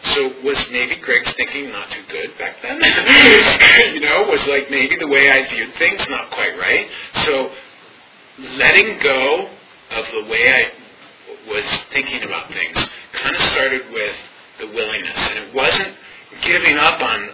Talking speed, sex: 160 wpm, male